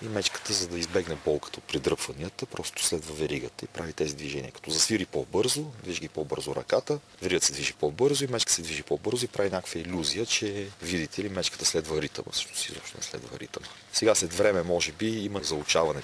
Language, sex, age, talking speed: Bulgarian, male, 40-59, 190 wpm